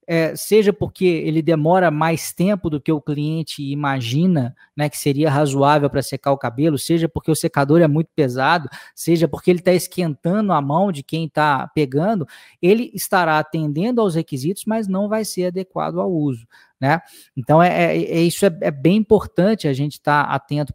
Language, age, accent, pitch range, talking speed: Portuguese, 20-39, Brazilian, 140-185 Hz, 175 wpm